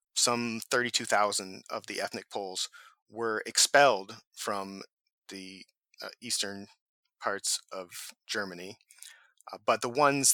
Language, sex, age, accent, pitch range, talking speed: English, male, 30-49, American, 100-125 Hz, 110 wpm